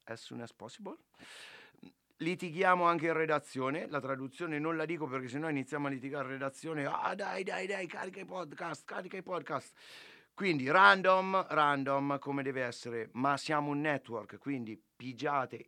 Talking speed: 170 wpm